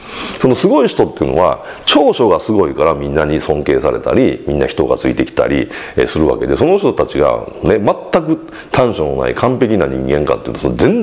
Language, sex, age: Japanese, male, 40-59